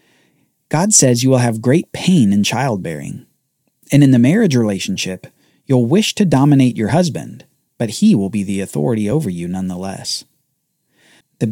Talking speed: 155 wpm